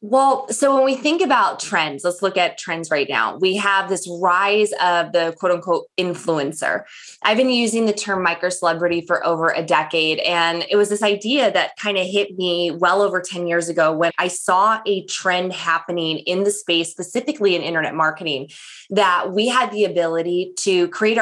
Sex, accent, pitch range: female, American, 175-215 Hz